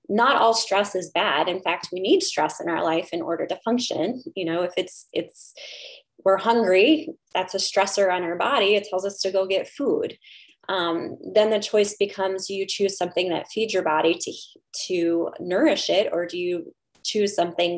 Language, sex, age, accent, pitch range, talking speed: English, female, 20-39, American, 170-200 Hz, 195 wpm